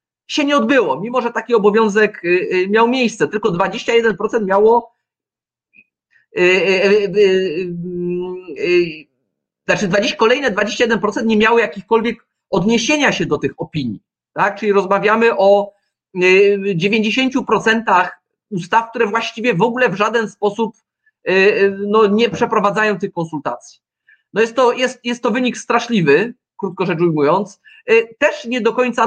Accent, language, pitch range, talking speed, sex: native, Polish, 190-235 Hz, 115 wpm, male